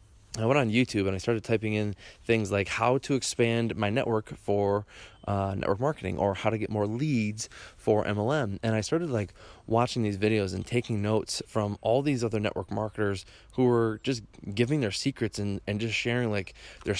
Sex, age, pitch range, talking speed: male, 20-39, 105-125 Hz, 200 wpm